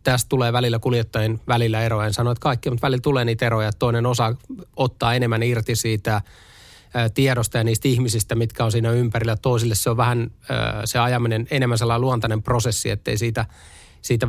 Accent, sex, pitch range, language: native, male, 110-125 Hz, Finnish